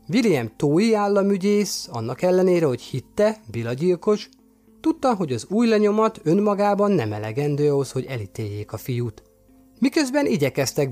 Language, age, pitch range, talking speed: Hungarian, 30-49, 125-195 Hz, 135 wpm